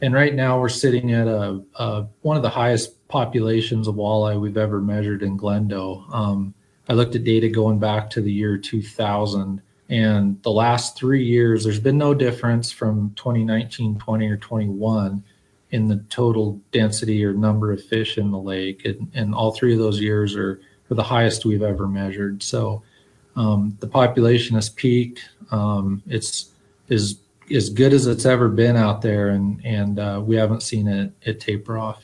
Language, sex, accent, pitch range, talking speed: English, male, American, 105-120 Hz, 180 wpm